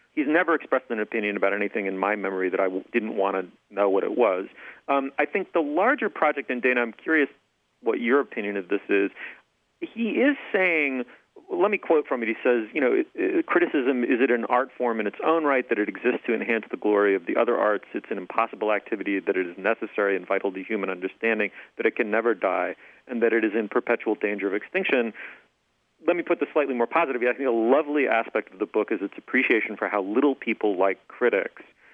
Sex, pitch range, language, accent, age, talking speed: male, 100-140 Hz, English, American, 40-59, 225 wpm